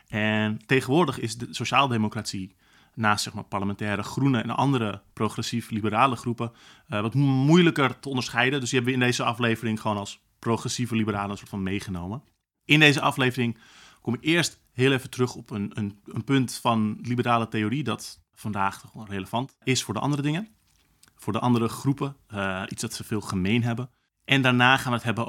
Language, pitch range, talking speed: Dutch, 100-125 Hz, 175 wpm